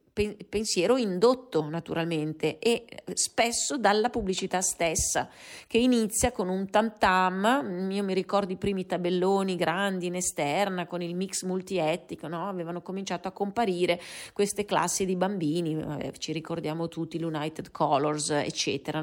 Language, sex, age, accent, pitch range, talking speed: Italian, female, 30-49, native, 175-230 Hz, 135 wpm